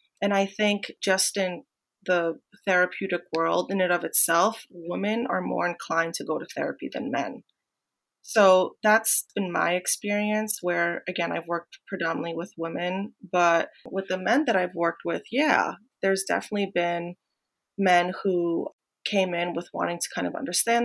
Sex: female